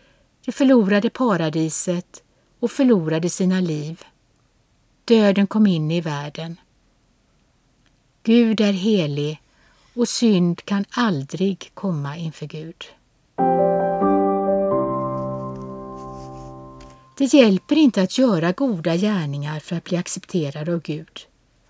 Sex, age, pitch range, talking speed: female, 60-79, 160-230 Hz, 95 wpm